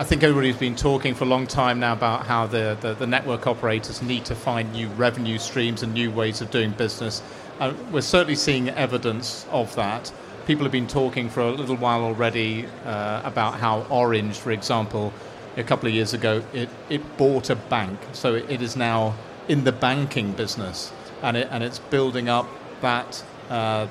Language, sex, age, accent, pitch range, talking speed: English, male, 40-59, British, 115-130 Hz, 195 wpm